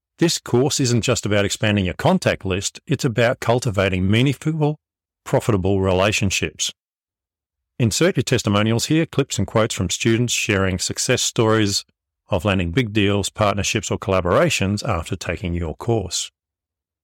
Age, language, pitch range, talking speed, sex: 40-59, English, 95-125 Hz, 135 wpm, male